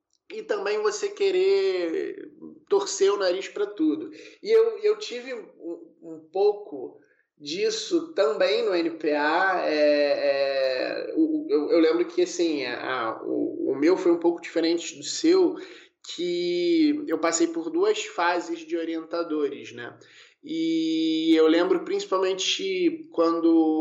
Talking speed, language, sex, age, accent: 130 wpm, Portuguese, male, 20-39, Brazilian